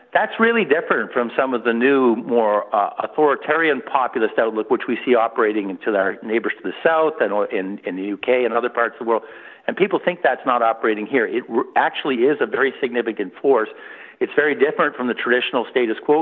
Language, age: English, 50-69